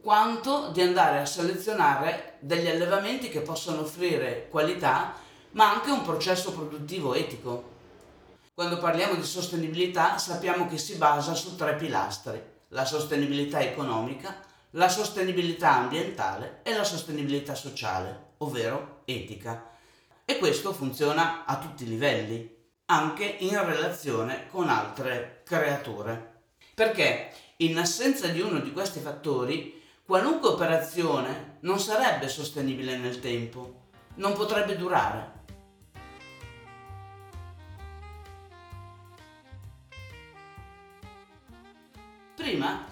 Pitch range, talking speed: 120-180 Hz, 100 wpm